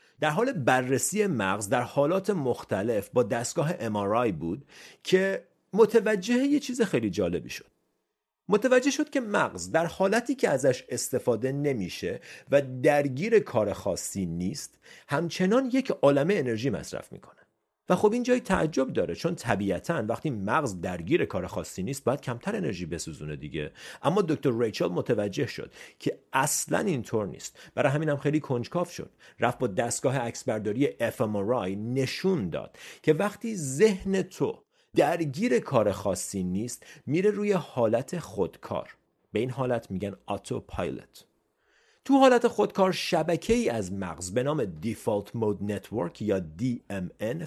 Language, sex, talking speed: Persian, male, 145 wpm